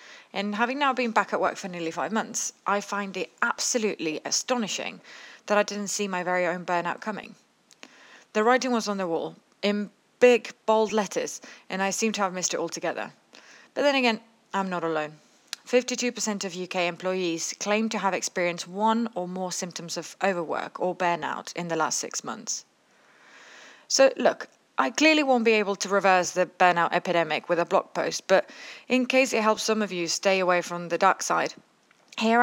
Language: English